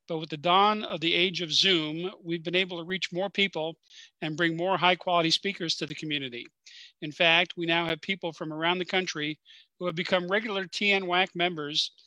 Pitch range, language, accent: 160-185 Hz, English, American